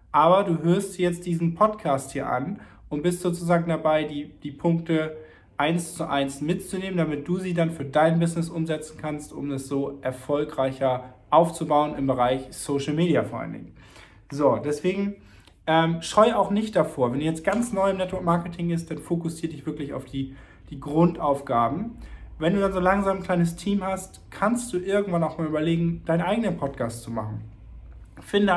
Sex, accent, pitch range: male, German, 140-170 Hz